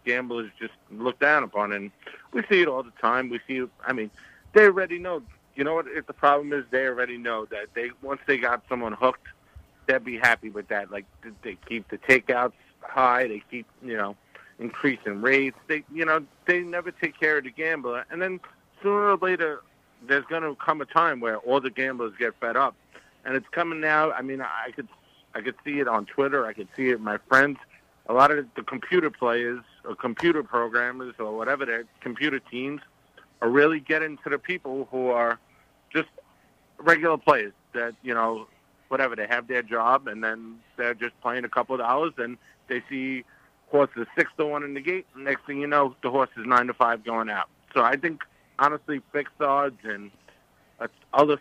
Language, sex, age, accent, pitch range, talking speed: English, male, 50-69, American, 115-145 Hz, 205 wpm